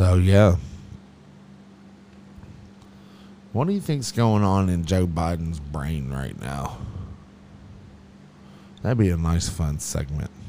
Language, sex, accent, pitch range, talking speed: English, male, American, 85-110 Hz, 115 wpm